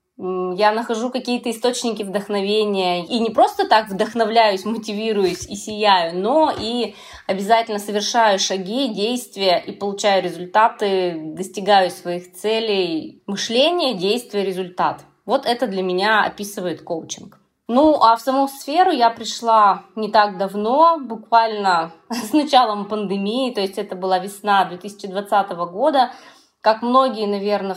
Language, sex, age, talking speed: Russian, female, 20-39, 125 wpm